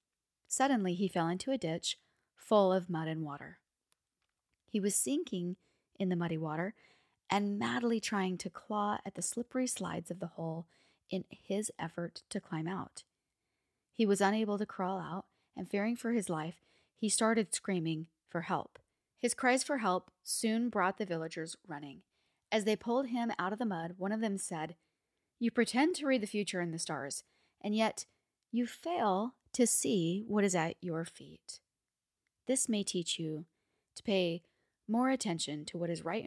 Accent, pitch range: American, 170-220 Hz